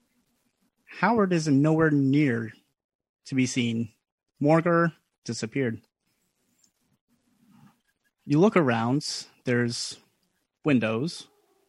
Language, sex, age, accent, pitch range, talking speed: English, male, 30-49, American, 120-165 Hz, 70 wpm